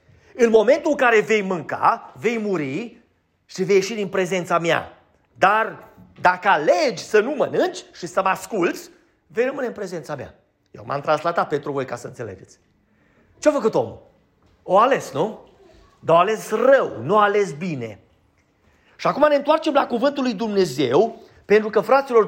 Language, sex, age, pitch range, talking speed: Romanian, male, 40-59, 190-255 Hz, 160 wpm